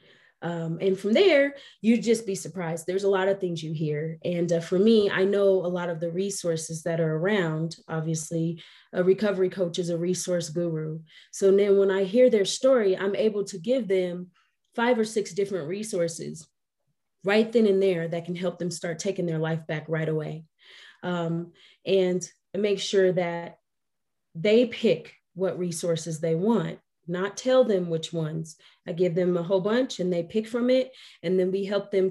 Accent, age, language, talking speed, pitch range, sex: American, 20-39, English, 190 wpm, 170-200 Hz, female